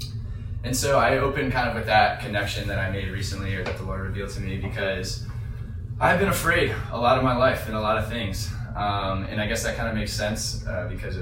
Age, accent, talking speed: 10-29, American, 250 wpm